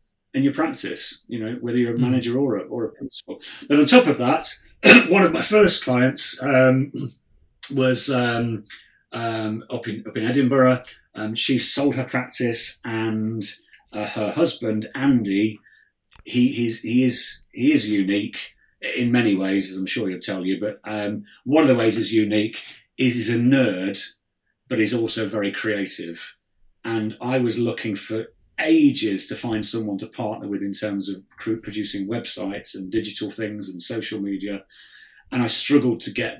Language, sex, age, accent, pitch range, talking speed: English, male, 30-49, British, 100-125 Hz, 170 wpm